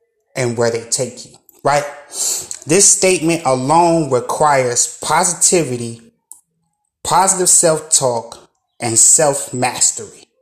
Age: 30-49